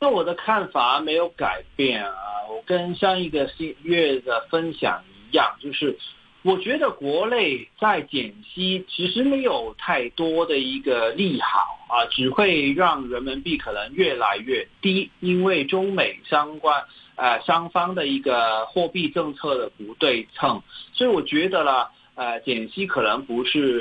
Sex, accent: male, native